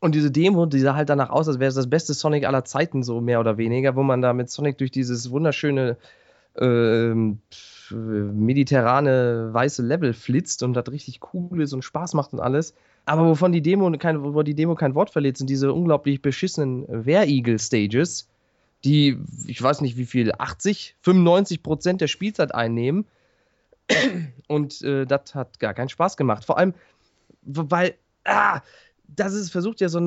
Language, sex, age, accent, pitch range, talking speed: German, male, 20-39, German, 135-185 Hz, 175 wpm